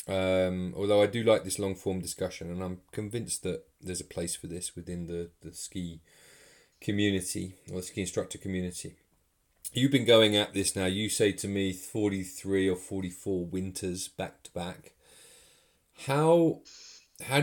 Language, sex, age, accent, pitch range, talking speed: English, male, 30-49, British, 90-105 Hz, 160 wpm